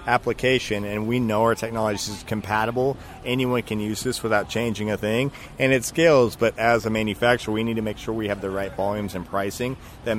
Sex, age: male, 40-59